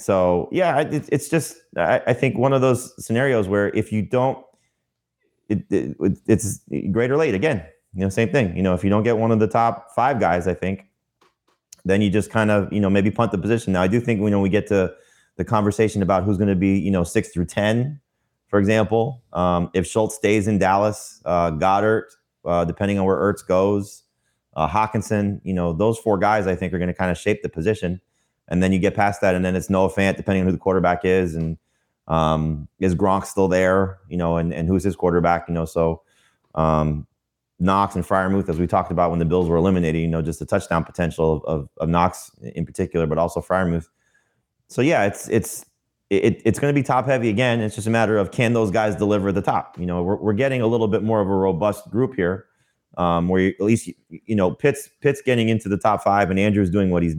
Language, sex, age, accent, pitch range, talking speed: English, male, 30-49, American, 90-110 Hz, 230 wpm